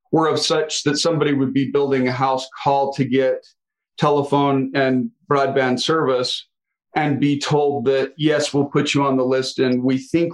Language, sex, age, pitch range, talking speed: English, male, 40-59, 125-150 Hz, 180 wpm